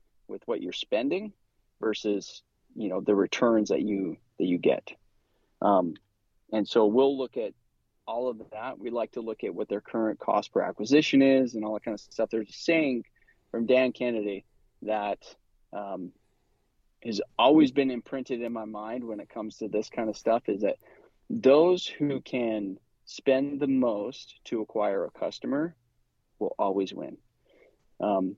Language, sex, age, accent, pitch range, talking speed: English, male, 30-49, American, 105-135 Hz, 165 wpm